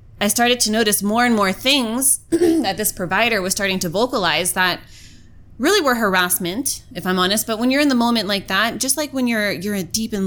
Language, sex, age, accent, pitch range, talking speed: English, female, 20-39, American, 175-225 Hz, 215 wpm